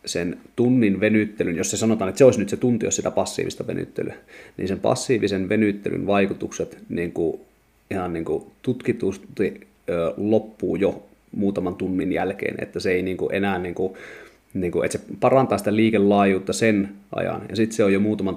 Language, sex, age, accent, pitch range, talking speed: Finnish, male, 30-49, native, 95-110 Hz, 185 wpm